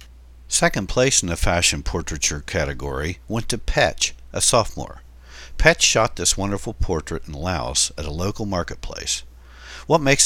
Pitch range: 65-100 Hz